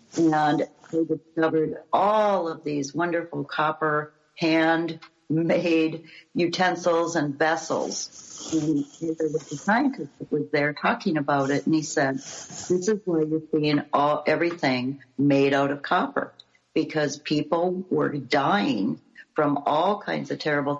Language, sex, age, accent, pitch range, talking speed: English, female, 60-79, American, 145-170 Hz, 125 wpm